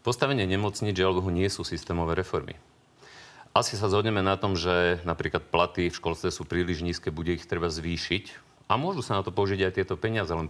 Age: 40-59